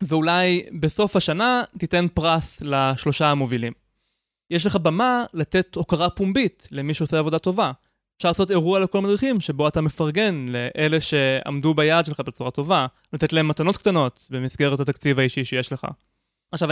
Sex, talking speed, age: male, 145 wpm, 20-39